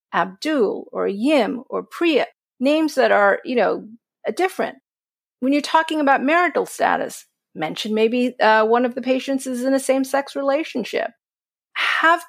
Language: English